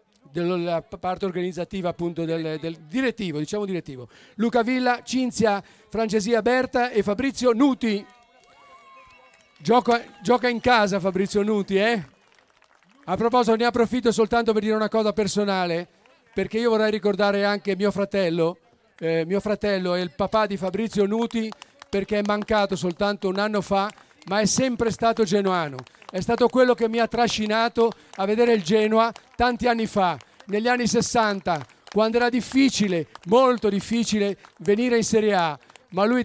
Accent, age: native, 40-59